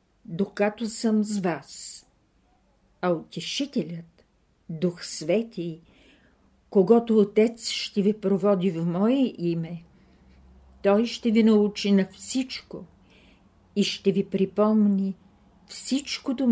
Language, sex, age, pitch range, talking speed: Bulgarian, female, 50-69, 170-210 Hz, 100 wpm